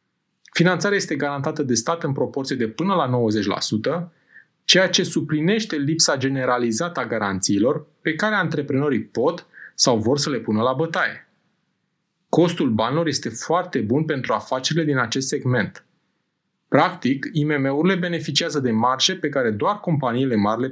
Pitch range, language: 125-175 Hz, Romanian